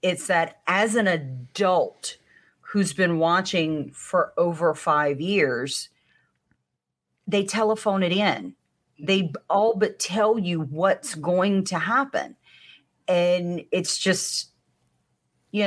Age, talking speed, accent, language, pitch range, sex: 40-59, 110 wpm, American, English, 150-190 Hz, female